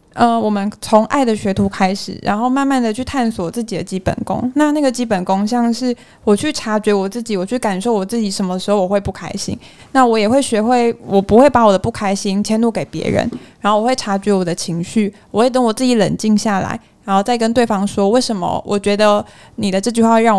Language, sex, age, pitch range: Chinese, female, 20-39, 195-240 Hz